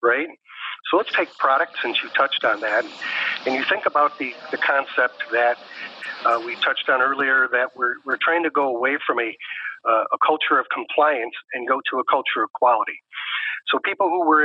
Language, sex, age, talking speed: English, male, 40-59, 200 wpm